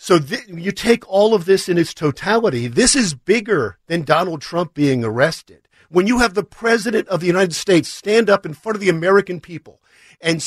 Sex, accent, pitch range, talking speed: male, American, 160-210 Hz, 200 wpm